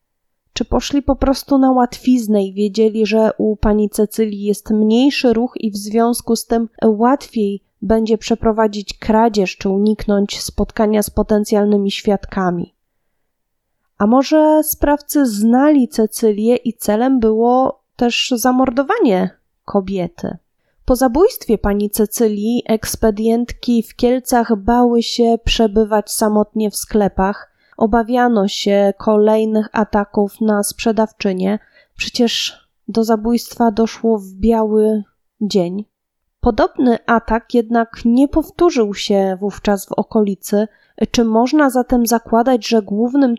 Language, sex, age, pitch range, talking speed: Polish, female, 20-39, 215-250 Hz, 115 wpm